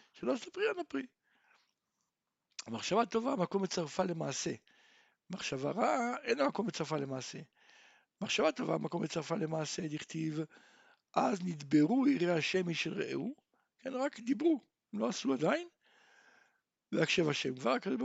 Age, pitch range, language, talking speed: 60-79, 160-250 Hz, Hebrew, 115 wpm